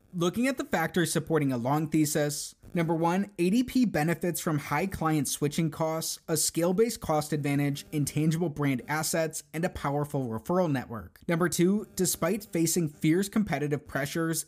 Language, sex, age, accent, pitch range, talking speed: English, male, 20-39, American, 145-175 Hz, 150 wpm